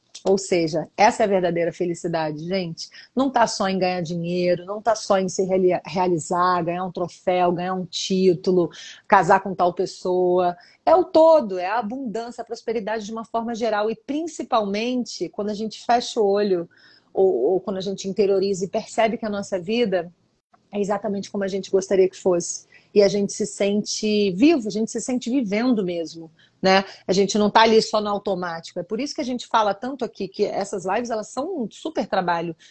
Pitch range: 185-230 Hz